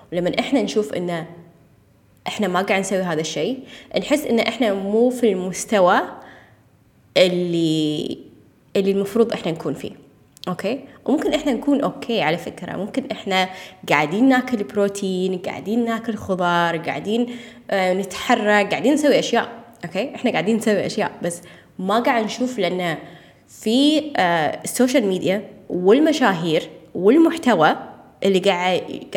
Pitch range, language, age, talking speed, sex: 180-240 Hz, Arabic, 20-39, 125 wpm, female